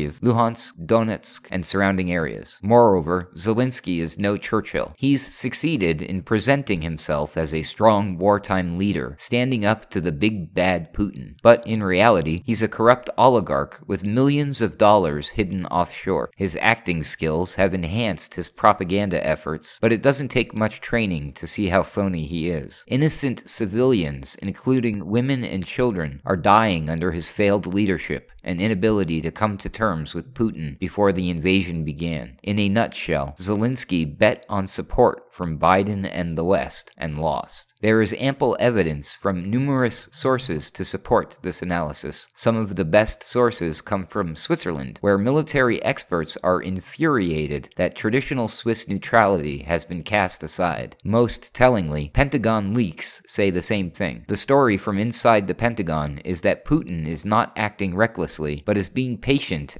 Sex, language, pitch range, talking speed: male, English, 85-115 Hz, 155 wpm